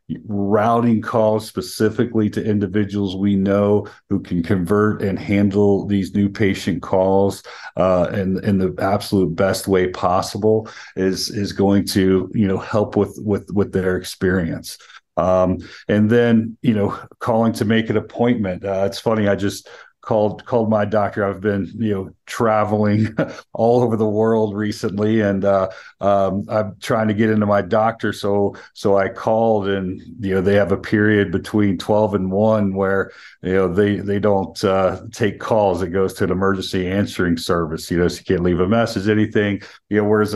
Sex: male